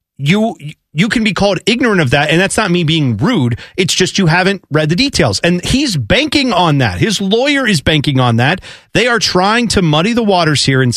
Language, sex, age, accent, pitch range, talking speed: English, male, 40-59, American, 135-185 Hz, 225 wpm